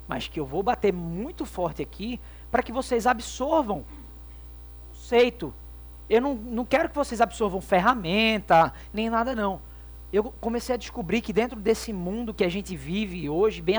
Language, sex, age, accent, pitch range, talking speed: Portuguese, male, 20-39, Brazilian, 165-250 Hz, 170 wpm